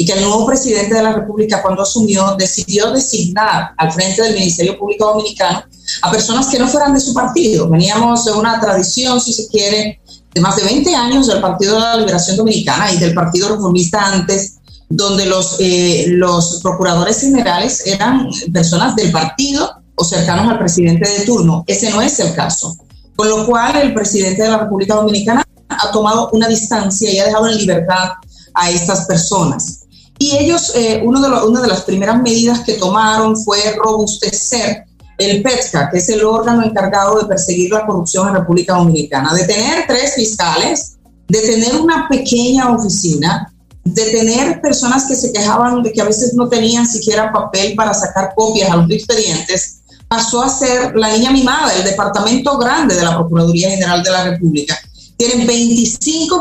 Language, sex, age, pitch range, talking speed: English, female, 30-49, 185-235 Hz, 175 wpm